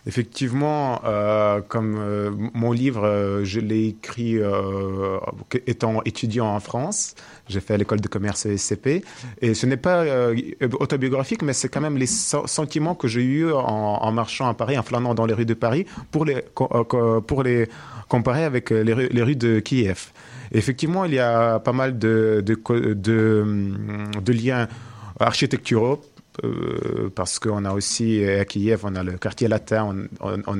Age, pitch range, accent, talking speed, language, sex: 30-49, 105-130 Hz, French, 175 wpm, French, male